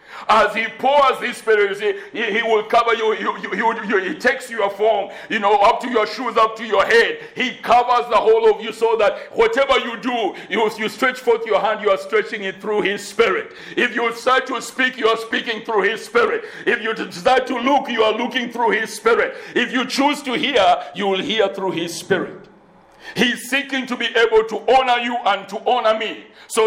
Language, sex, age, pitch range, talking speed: English, male, 60-79, 215-265 Hz, 225 wpm